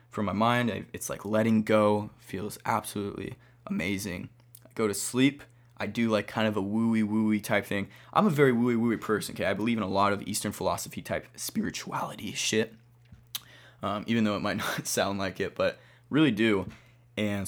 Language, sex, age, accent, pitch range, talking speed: English, male, 20-39, American, 105-120 Hz, 180 wpm